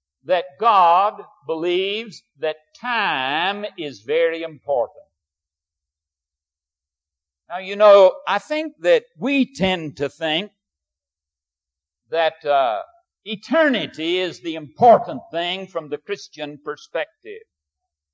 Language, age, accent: English, 60-79, American